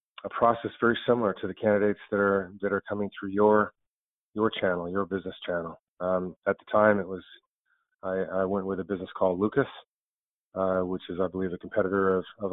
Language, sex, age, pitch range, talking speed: English, male, 40-59, 95-105 Hz, 200 wpm